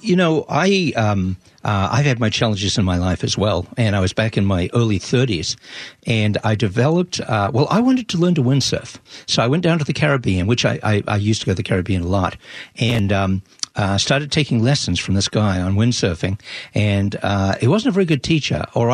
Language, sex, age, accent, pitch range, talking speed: English, male, 60-79, American, 100-140 Hz, 230 wpm